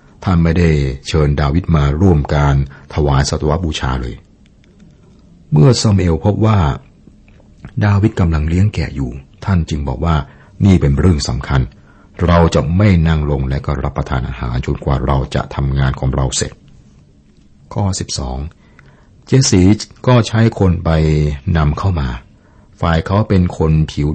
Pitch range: 70-85 Hz